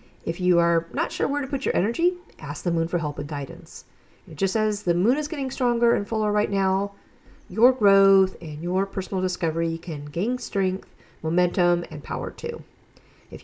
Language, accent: English, American